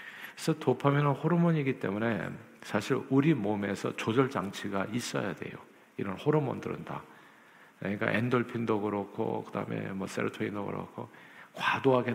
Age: 50-69